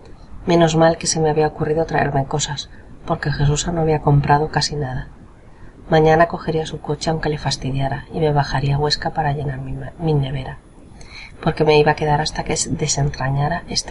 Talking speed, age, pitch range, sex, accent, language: 185 wpm, 30-49, 140-160 Hz, female, Spanish, Spanish